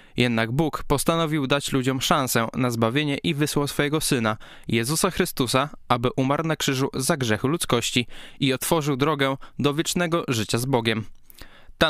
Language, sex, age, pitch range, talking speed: Polish, male, 20-39, 115-150 Hz, 150 wpm